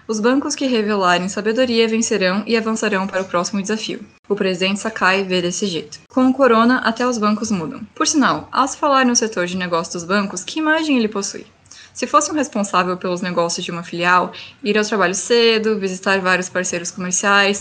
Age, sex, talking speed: 10-29, female, 195 wpm